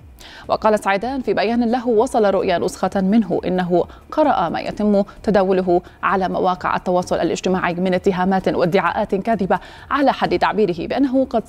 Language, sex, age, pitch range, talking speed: Arabic, female, 30-49, 190-245 Hz, 140 wpm